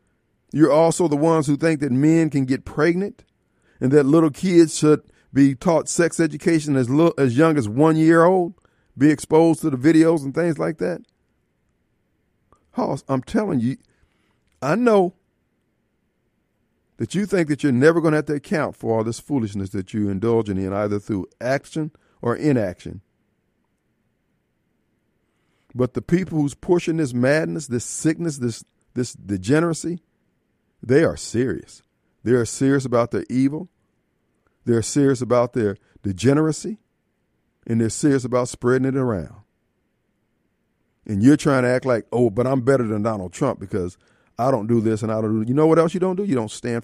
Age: 50-69